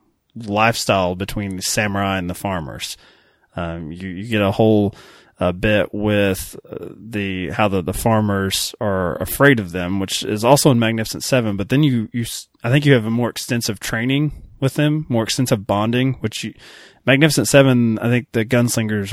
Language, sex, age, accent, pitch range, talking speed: English, male, 20-39, American, 95-120 Hz, 180 wpm